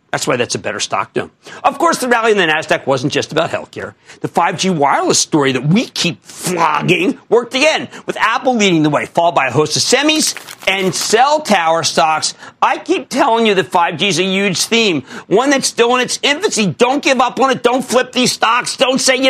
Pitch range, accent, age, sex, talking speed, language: 160-255 Hz, American, 50-69, male, 225 wpm, English